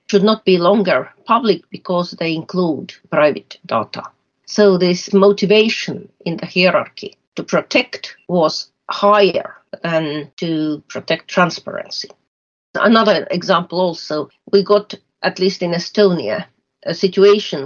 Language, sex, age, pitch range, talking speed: English, female, 50-69, 165-200 Hz, 120 wpm